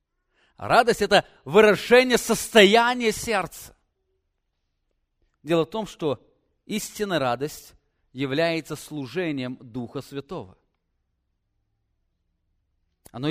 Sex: male